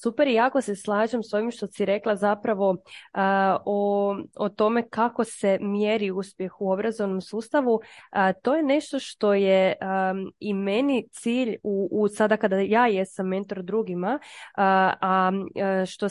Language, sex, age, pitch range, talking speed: Croatian, female, 20-39, 190-235 Hz, 155 wpm